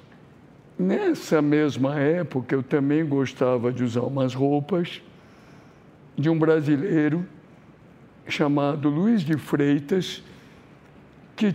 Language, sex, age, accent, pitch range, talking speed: English, male, 60-79, Brazilian, 145-175 Hz, 95 wpm